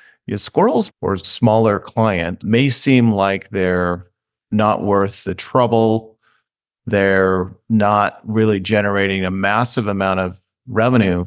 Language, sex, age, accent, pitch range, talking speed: English, male, 50-69, American, 95-115 Hz, 110 wpm